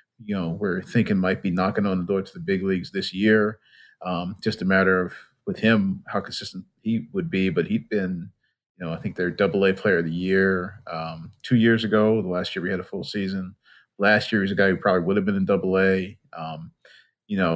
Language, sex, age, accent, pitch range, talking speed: English, male, 40-59, American, 95-115 Hz, 230 wpm